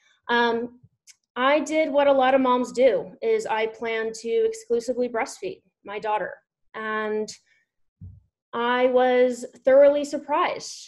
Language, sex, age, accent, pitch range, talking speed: English, female, 30-49, American, 220-285 Hz, 120 wpm